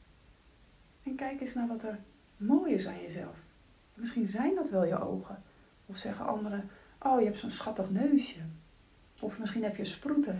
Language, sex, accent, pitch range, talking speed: Dutch, female, Dutch, 195-245 Hz, 165 wpm